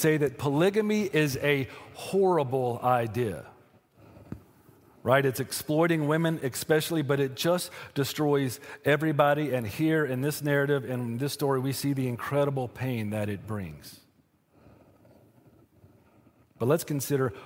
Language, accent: English, American